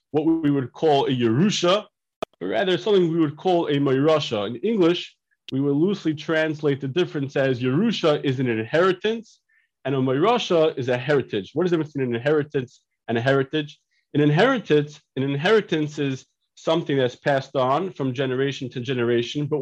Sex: male